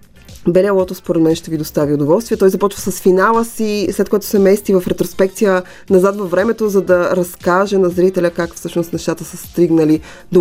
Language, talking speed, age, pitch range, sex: Bulgarian, 190 wpm, 20-39, 165-195 Hz, female